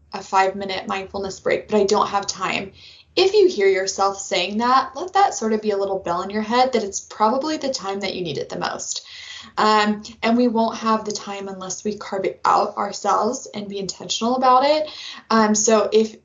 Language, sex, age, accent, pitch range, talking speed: English, female, 20-39, American, 200-230 Hz, 220 wpm